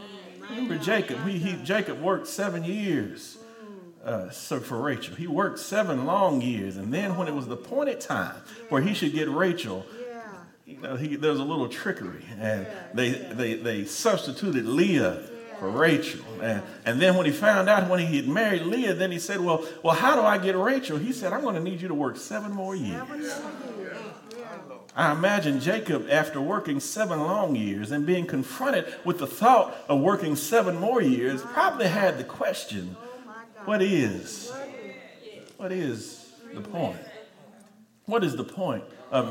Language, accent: English, American